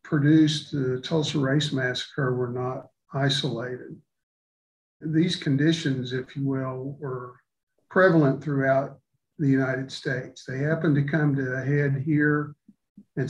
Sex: male